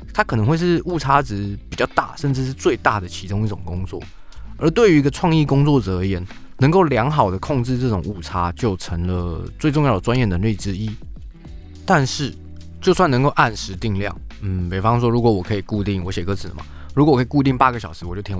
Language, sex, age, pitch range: Chinese, male, 20-39, 95-130 Hz